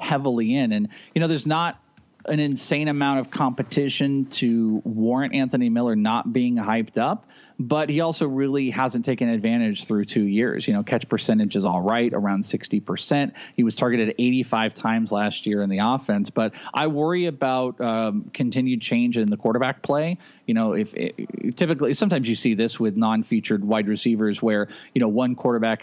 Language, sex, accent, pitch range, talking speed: English, male, American, 110-160 Hz, 185 wpm